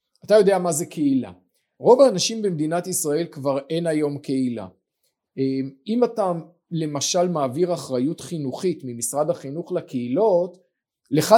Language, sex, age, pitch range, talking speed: Hebrew, male, 40-59, 140-185 Hz, 120 wpm